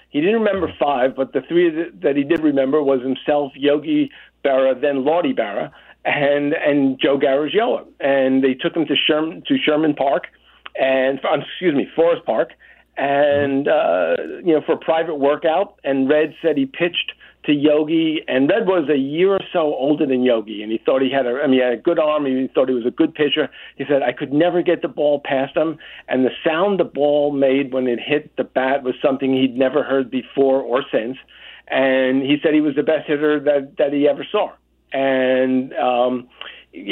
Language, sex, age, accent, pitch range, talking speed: English, male, 50-69, American, 130-155 Hz, 205 wpm